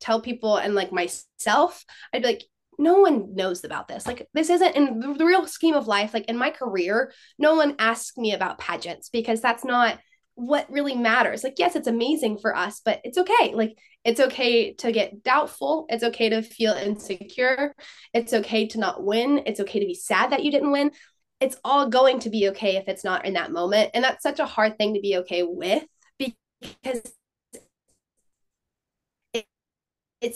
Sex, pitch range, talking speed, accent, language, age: female, 195-255 Hz, 190 wpm, American, English, 20-39